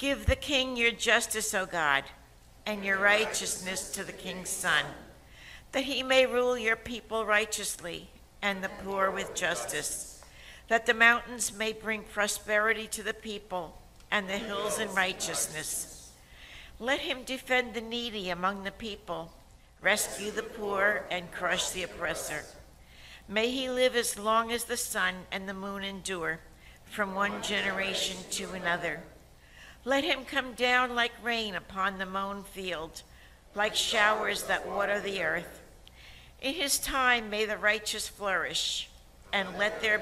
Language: English